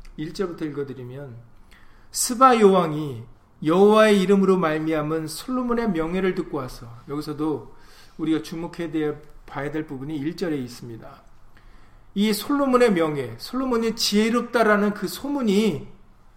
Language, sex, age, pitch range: Korean, male, 40-59, 135-195 Hz